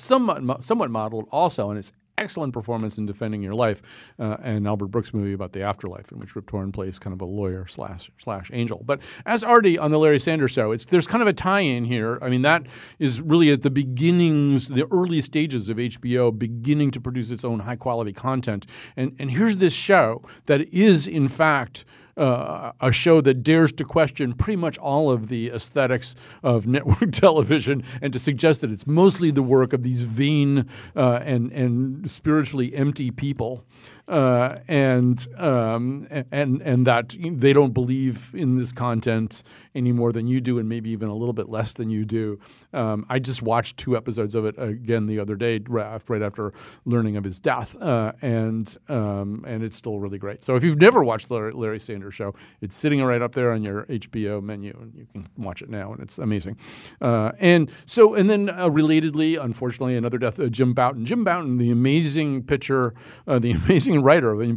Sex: male